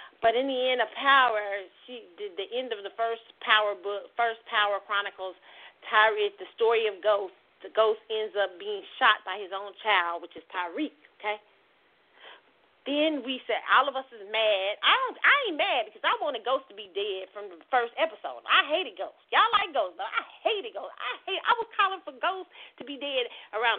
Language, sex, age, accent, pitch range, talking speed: English, female, 40-59, American, 215-360 Hz, 210 wpm